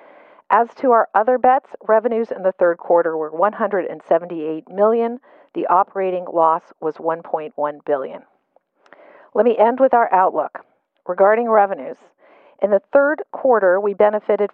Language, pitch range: English, 175-225 Hz